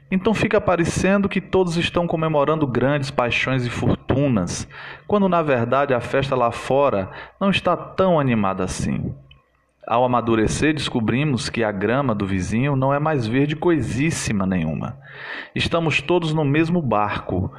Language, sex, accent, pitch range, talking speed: Portuguese, male, Brazilian, 120-170 Hz, 145 wpm